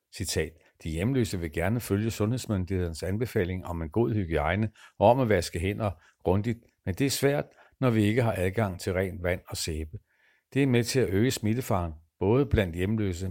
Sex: male